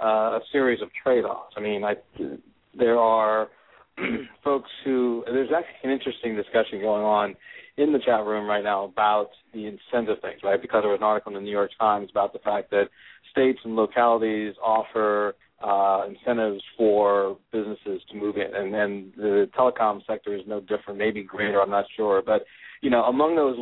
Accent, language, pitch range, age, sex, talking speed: American, English, 105-125 Hz, 40-59, male, 180 wpm